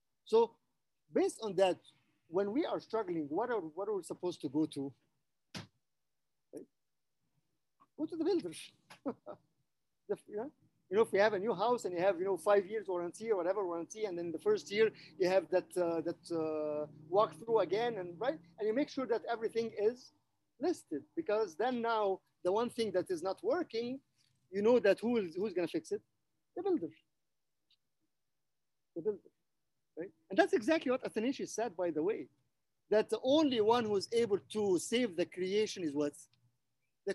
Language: English